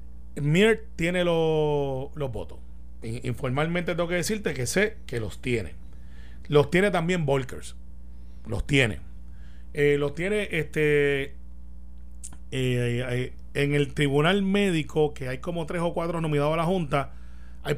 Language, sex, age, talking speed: Spanish, male, 30-49, 135 wpm